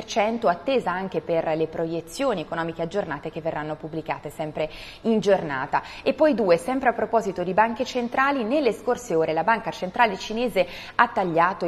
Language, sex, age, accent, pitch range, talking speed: Italian, female, 20-39, native, 165-215 Hz, 160 wpm